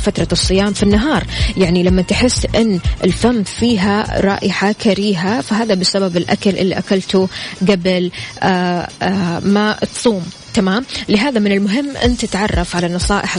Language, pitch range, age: Arabic, 185-225 Hz, 20-39